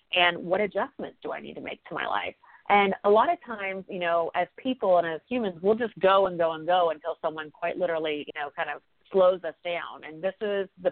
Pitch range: 170-210 Hz